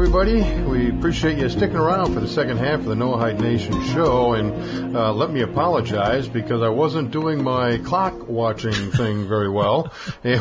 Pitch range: 115-160 Hz